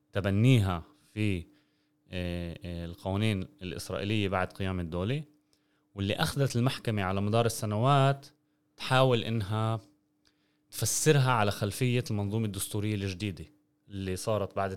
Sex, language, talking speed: male, Arabic, 100 wpm